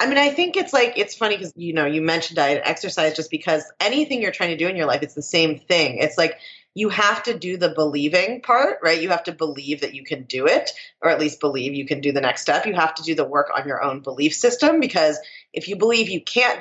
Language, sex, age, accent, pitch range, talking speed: English, female, 30-49, American, 145-185 Hz, 270 wpm